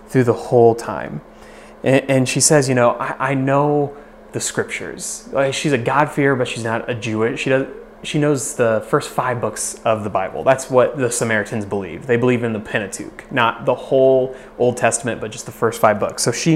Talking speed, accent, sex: 195 wpm, American, male